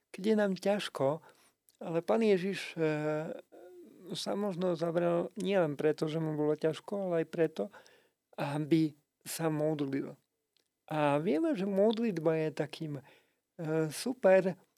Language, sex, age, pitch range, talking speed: Slovak, male, 50-69, 150-190 Hz, 115 wpm